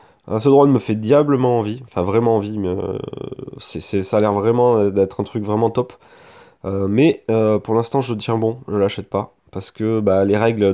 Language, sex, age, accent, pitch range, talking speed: French, male, 30-49, French, 100-115 Hz, 200 wpm